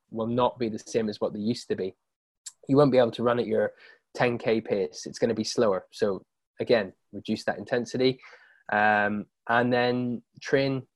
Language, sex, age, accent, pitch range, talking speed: English, male, 20-39, British, 110-125 Hz, 190 wpm